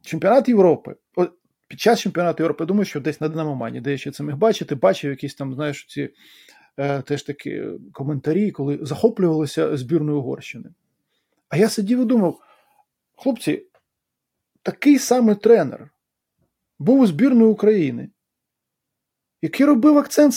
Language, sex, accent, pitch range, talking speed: Ukrainian, male, native, 165-245 Hz, 135 wpm